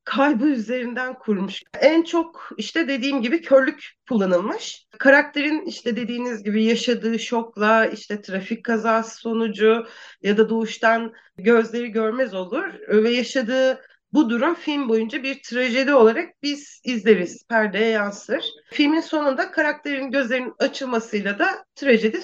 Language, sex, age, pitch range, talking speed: Turkish, female, 40-59, 215-275 Hz, 125 wpm